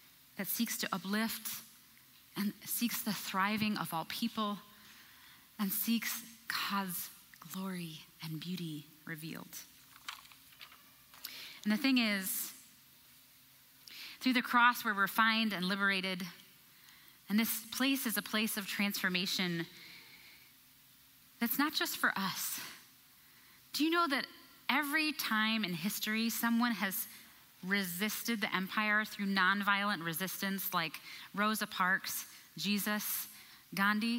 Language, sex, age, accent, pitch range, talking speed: English, female, 30-49, American, 185-230 Hz, 110 wpm